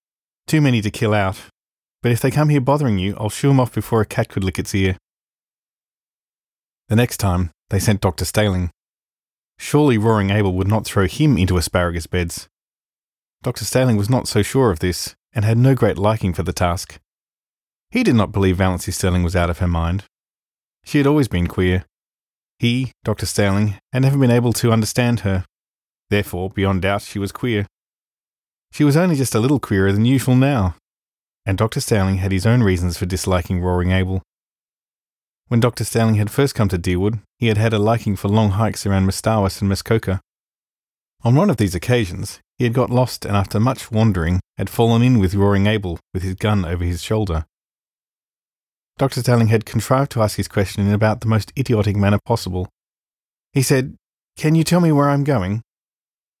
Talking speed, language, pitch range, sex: 190 wpm, English, 95-120 Hz, male